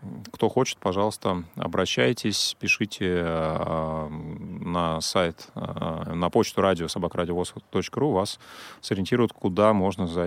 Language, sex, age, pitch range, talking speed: Russian, male, 30-49, 95-125 Hz, 105 wpm